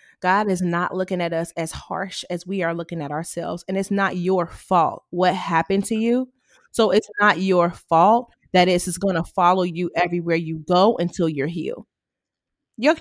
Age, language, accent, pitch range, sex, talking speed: 20-39, English, American, 175-225 Hz, female, 190 wpm